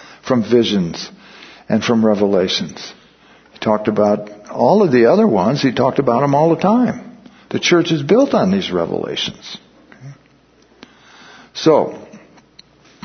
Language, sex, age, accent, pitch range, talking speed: English, male, 60-79, American, 115-160 Hz, 130 wpm